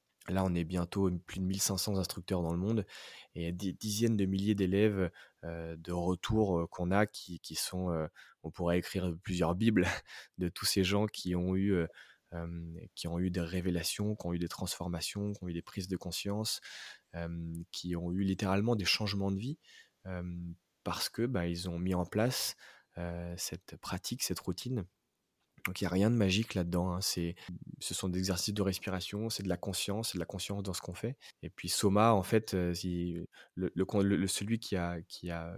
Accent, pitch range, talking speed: French, 85-100 Hz, 195 wpm